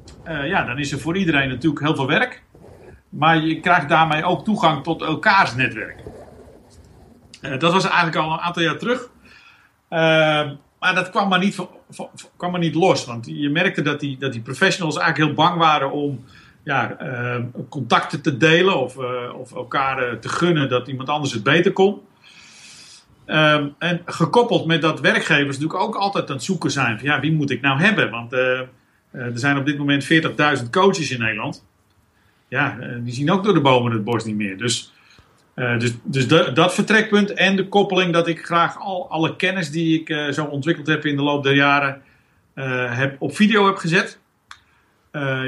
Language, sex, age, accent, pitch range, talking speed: Dutch, male, 50-69, Dutch, 135-175 Hz, 200 wpm